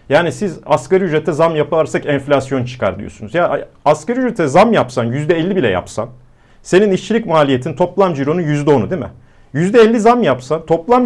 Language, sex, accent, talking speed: Turkish, male, native, 155 wpm